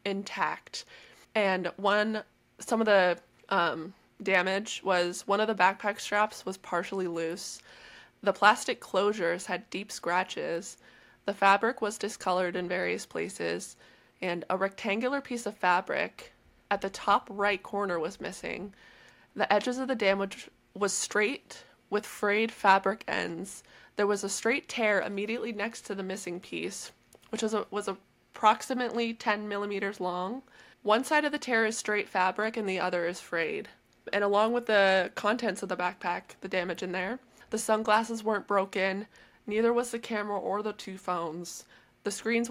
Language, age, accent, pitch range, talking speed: English, 20-39, American, 185-215 Hz, 160 wpm